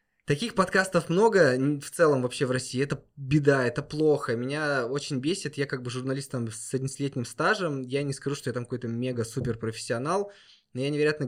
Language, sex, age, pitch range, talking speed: Russian, male, 20-39, 125-155 Hz, 175 wpm